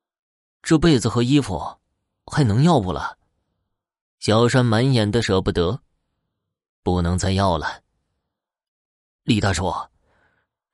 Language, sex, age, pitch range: Chinese, male, 20-39, 85-110 Hz